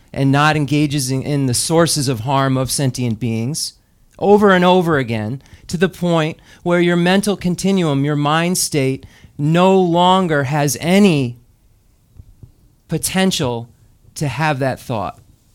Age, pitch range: 40-59, 125-165 Hz